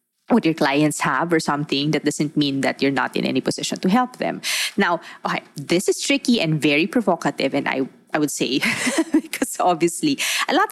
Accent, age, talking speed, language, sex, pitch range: Filipino, 20-39, 190 wpm, English, female, 150-225 Hz